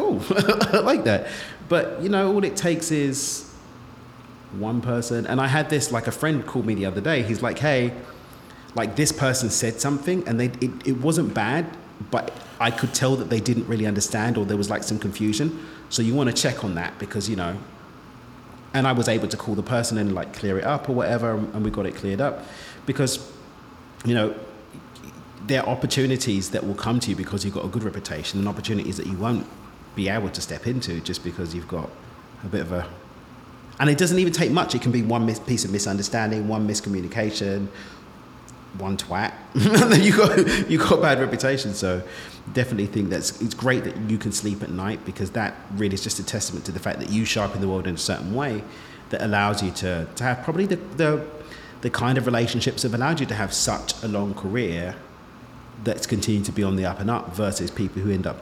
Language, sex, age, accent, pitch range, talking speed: English, male, 30-49, British, 100-125 Hz, 220 wpm